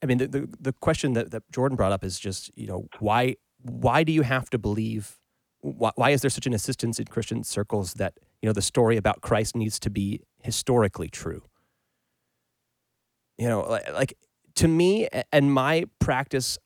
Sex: male